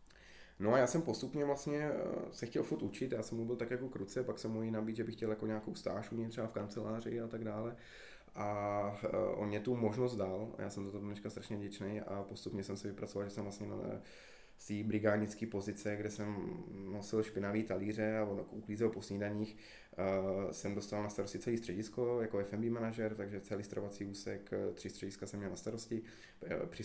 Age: 20-39